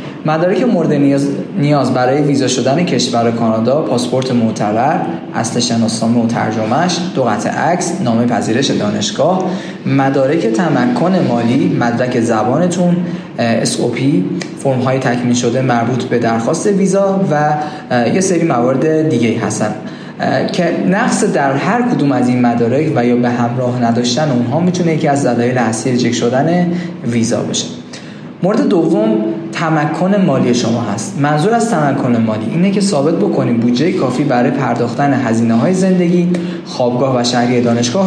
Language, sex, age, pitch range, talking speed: Persian, male, 20-39, 120-175 Hz, 140 wpm